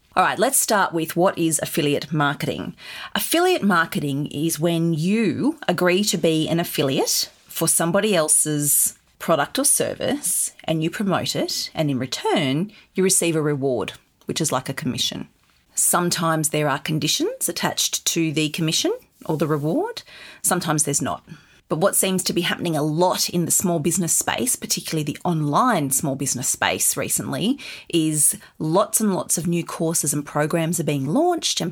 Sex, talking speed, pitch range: female, 165 wpm, 150-185 Hz